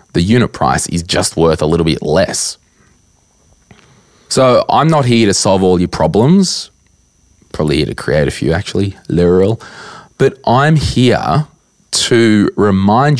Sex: male